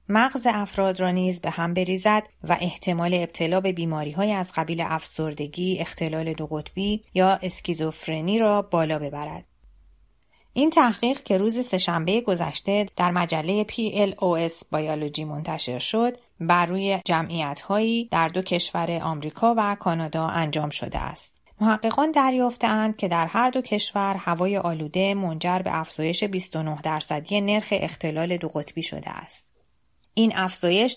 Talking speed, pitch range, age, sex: 135 wpm, 165-205 Hz, 30-49, female